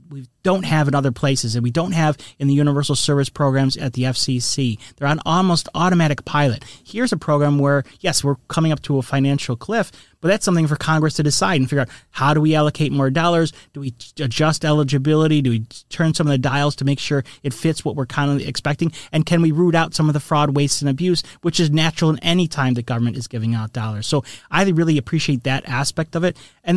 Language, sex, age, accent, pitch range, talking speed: English, male, 30-49, American, 135-165 Hz, 235 wpm